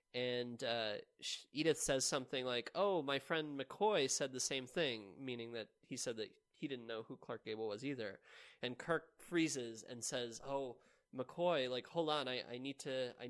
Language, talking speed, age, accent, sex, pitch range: English, 190 wpm, 20-39, American, male, 115-140 Hz